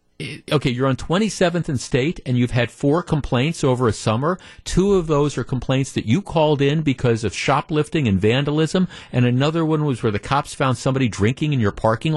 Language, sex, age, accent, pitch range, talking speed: English, male, 50-69, American, 120-160 Hz, 205 wpm